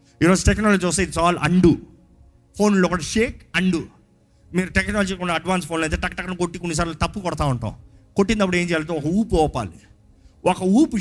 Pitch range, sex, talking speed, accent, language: 130-205 Hz, male, 180 wpm, native, Telugu